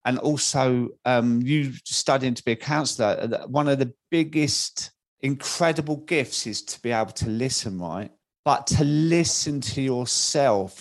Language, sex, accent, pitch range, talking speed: English, male, British, 110-140 Hz, 150 wpm